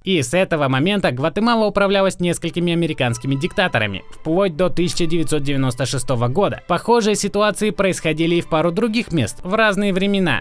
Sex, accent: male, native